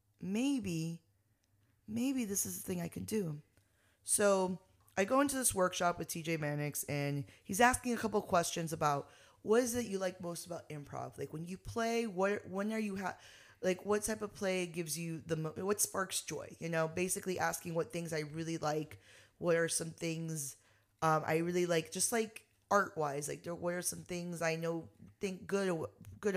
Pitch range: 145-185 Hz